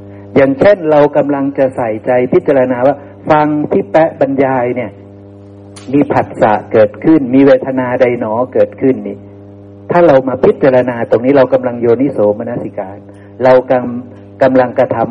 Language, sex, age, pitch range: Thai, male, 60-79, 100-155 Hz